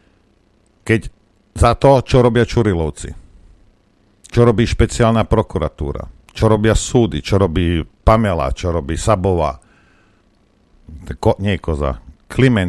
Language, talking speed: Slovak, 100 wpm